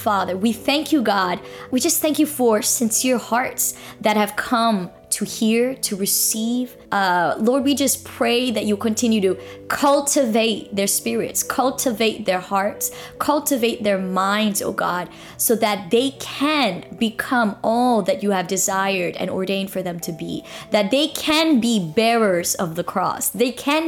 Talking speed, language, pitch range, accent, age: 165 wpm, English, 205-265 Hz, American, 20-39